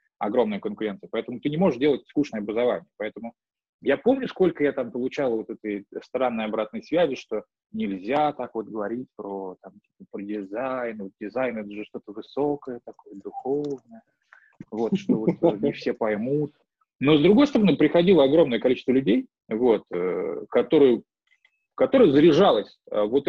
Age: 20-39